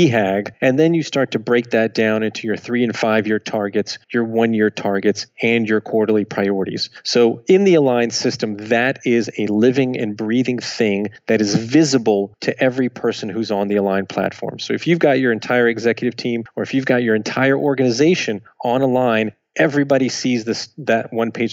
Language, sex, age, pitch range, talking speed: English, male, 30-49, 110-135 Hz, 185 wpm